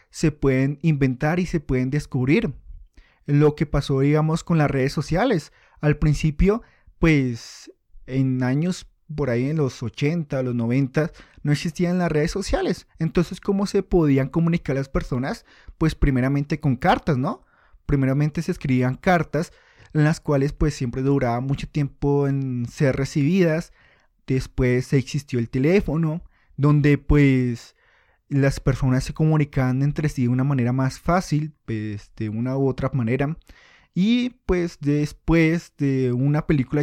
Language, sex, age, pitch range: Spanish, male, 30-49, 135-165 Hz